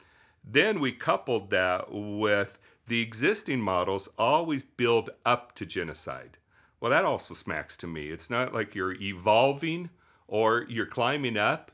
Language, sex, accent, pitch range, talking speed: English, male, American, 95-120 Hz, 145 wpm